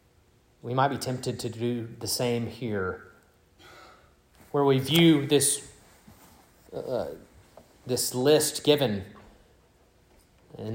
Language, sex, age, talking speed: English, male, 30-49, 100 wpm